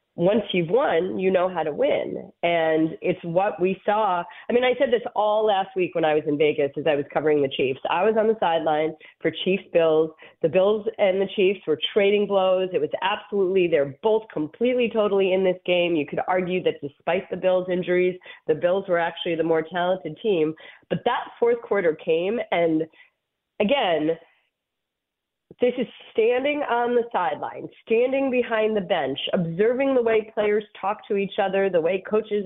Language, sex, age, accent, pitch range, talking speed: English, female, 30-49, American, 165-225 Hz, 190 wpm